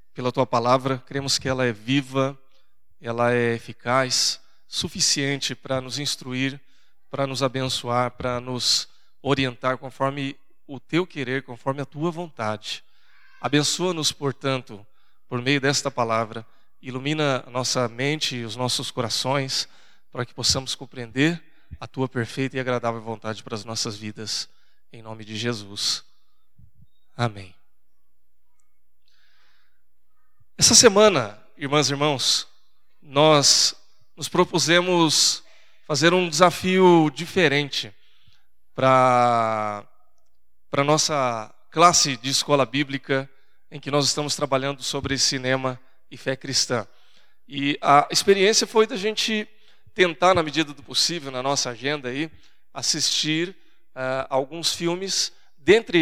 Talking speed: 120 wpm